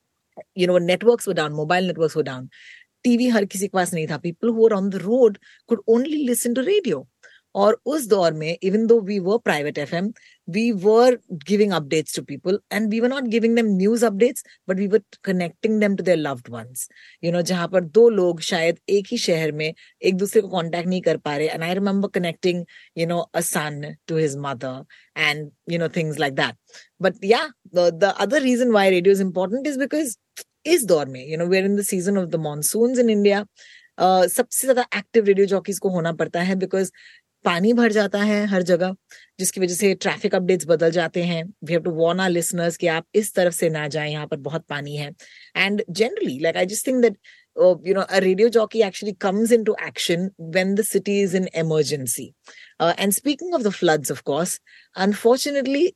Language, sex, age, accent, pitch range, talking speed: Hindi, female, 30-49, native, 170-220 Hz, 180 wpm